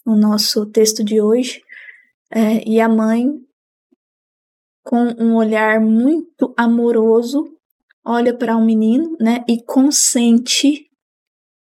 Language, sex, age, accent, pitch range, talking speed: Portuguese, female, 20-39, Brazilian, 220-250 Hz, 115 wpm